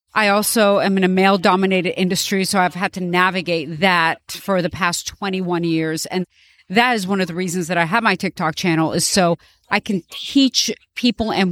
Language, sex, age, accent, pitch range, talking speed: English, female, 40-59, American, 180-230 Hz, 200 wpm